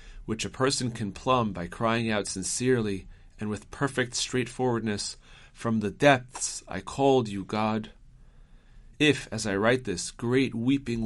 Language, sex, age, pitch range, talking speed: English, male, 40-59, 100-125 Hz, 145 wpm